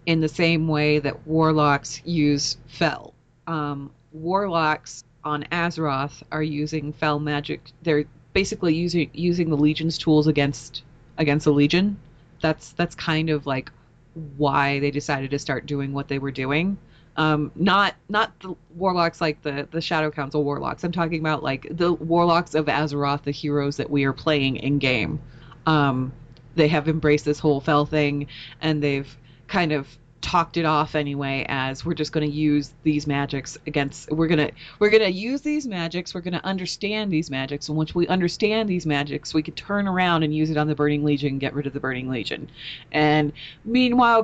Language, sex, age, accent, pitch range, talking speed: English, female, 30-49, American, 145-175 Hz, 185 wpm